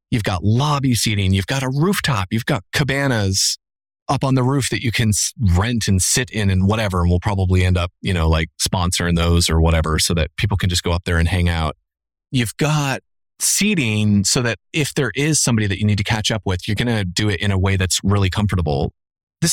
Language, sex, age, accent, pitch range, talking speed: English, male, 30-49, American, 95-130 Hz, 230 wpm